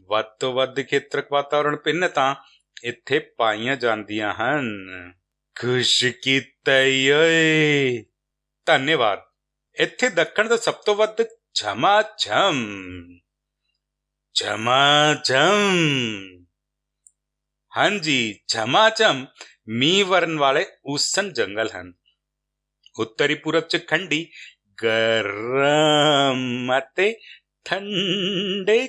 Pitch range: 110-170 Hz